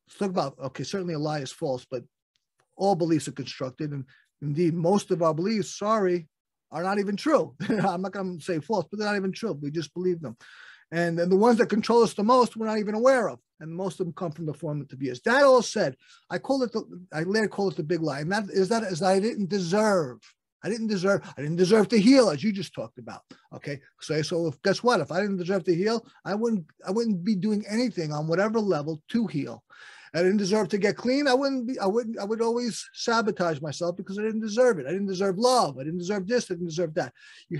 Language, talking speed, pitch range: English, 245 wpm, 170-220 Hz